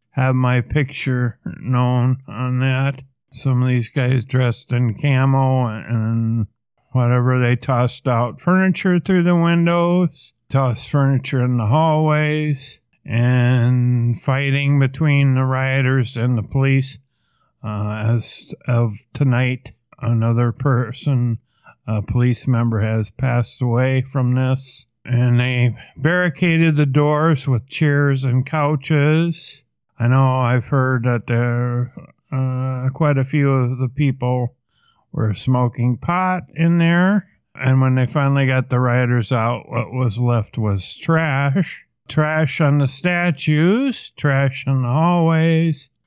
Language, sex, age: English, male, 50-69